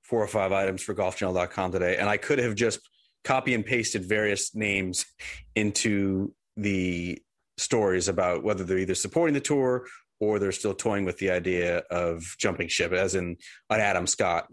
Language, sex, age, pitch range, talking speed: English, male, 30-49, 90-110 Hz, 175 wpm